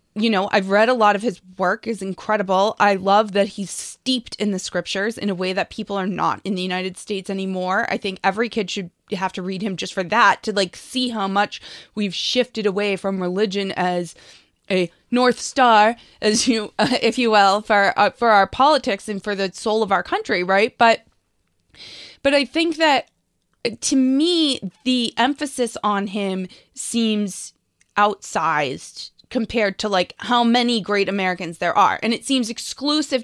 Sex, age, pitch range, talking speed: female, 20-39, 195-255 Hz, 185 wpm